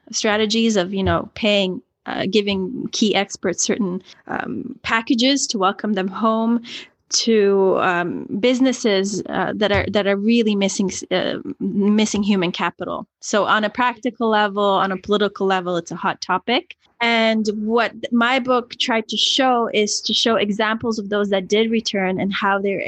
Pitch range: 190-225 Hz